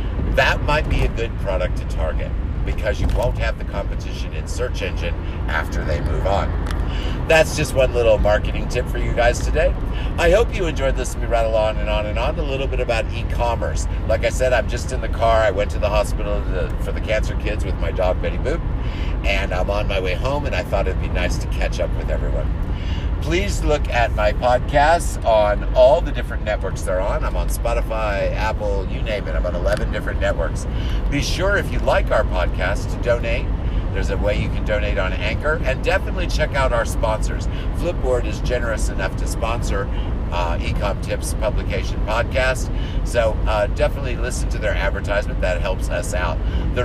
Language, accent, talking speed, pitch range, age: English, American, 200 wpm, 85-105 Hz, 50-69